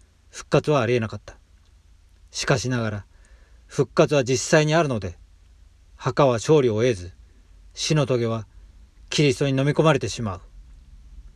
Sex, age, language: male, 40-59, Japanese